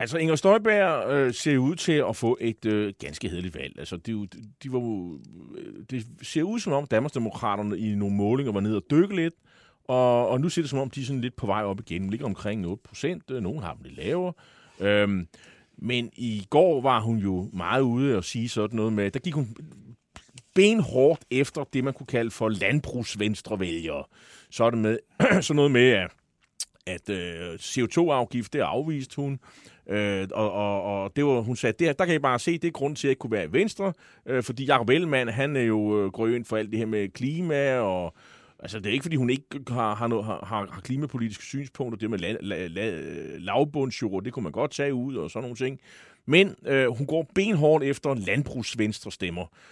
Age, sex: 30-49, male